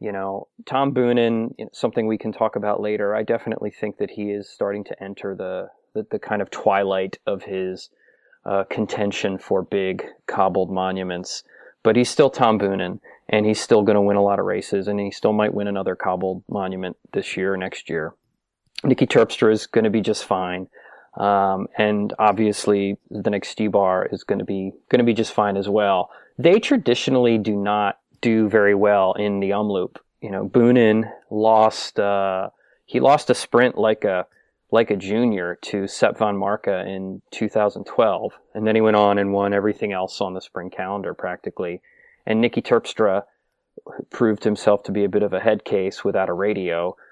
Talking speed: 185 wpm